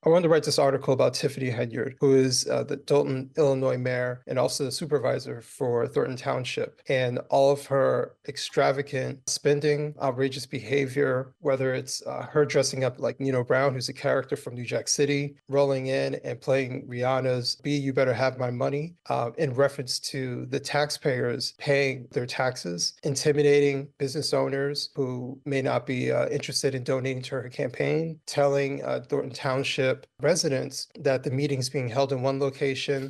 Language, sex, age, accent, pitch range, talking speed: English, male, 30-49, American, 130-145 Hz, 170 wpm